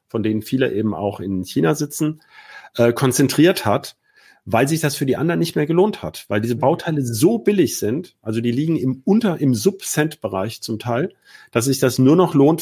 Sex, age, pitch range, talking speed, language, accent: male, 40-59, 110-150 Hz, 200 wpm, German, German